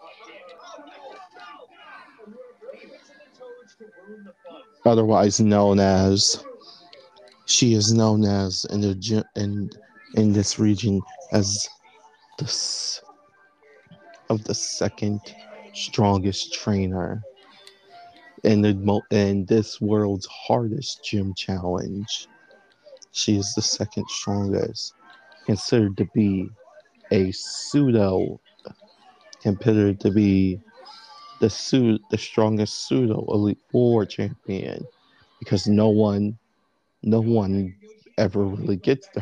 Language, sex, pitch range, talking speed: English, male, 100-125 Hz, 90 wpm